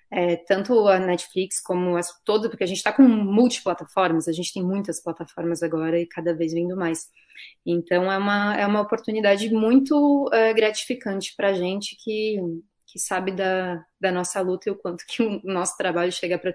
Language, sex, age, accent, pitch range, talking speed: Portuguese, female, 20-39, Brazilian, 175-205 Hz, 185 wpm